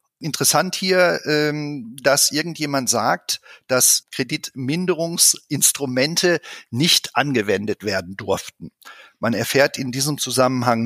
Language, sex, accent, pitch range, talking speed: German, male, German, 120-160 Hz, 90 wpm